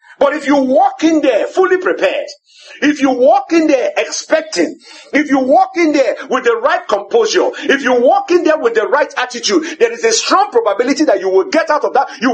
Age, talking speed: 50-69, 220 wpm